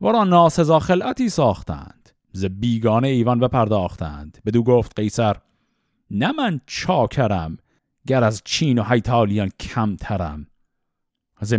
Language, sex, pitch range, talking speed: Persian, male, 105-150 Hz, 115 wpm